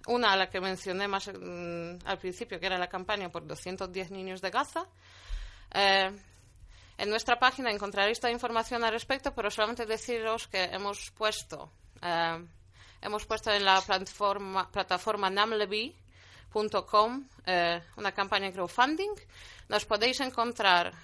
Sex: female